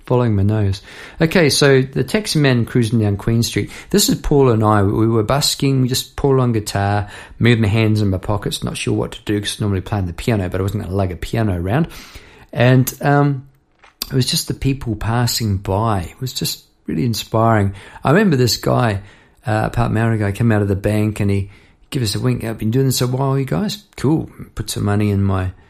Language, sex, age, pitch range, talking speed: English, male, 50-69, 100-130 Hz, 225 wpm